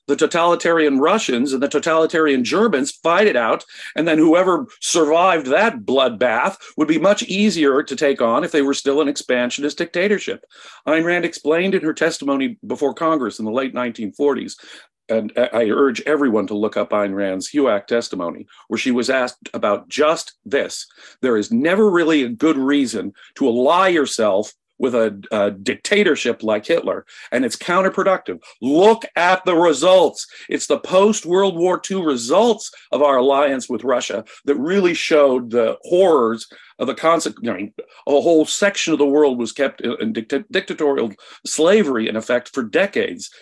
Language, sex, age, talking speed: English, male, 50-69, 165 wpm